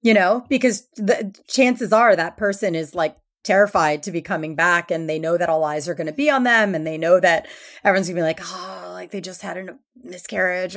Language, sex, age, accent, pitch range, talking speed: English, female, 30-49, American, 170-205 Hz, 240 wpm